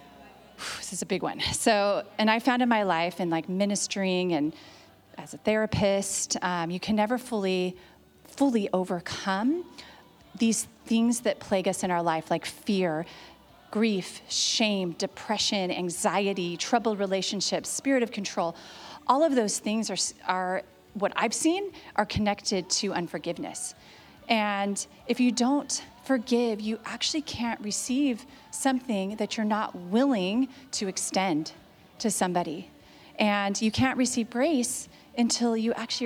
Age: 30-49